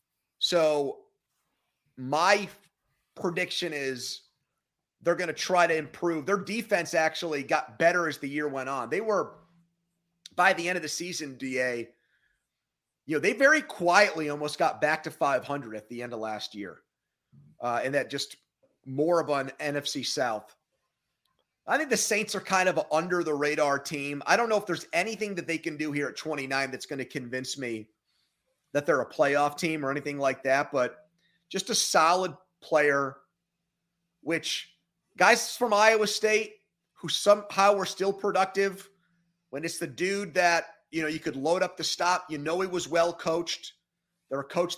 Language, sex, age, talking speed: English, male, 30-49, 170 wpm